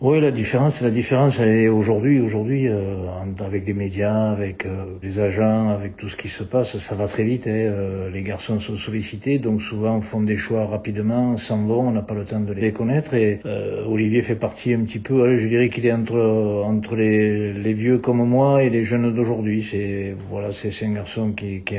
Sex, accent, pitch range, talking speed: male, French, 105-120 Hz, 225 wpm